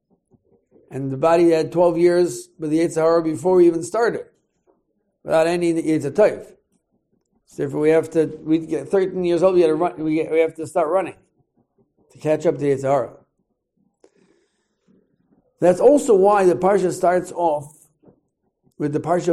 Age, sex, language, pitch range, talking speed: 50-69, male, English, 150-185 Hz, 160 wpm